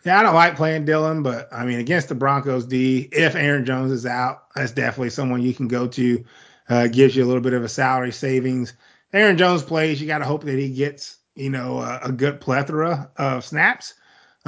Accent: American